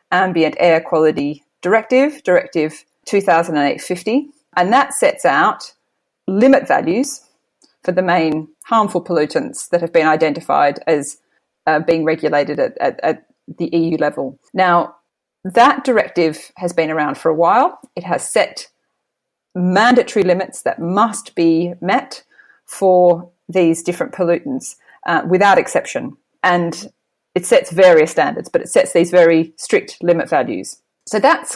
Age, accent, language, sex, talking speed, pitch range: 30-49, Australian, English, female, 145 wpm, 165-215 Hz